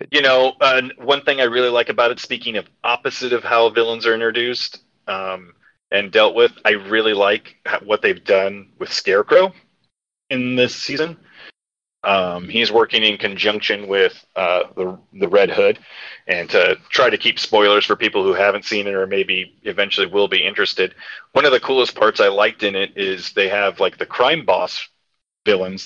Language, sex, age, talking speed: English, male, 30-49, 185 wpm